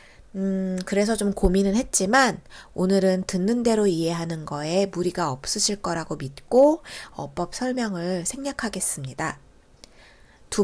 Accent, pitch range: native, 175-250 Hz